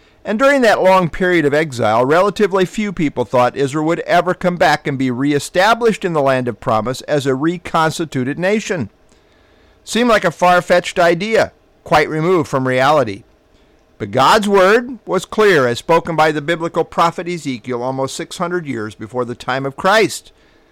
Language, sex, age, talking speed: English, male, 50-69, 165 wpm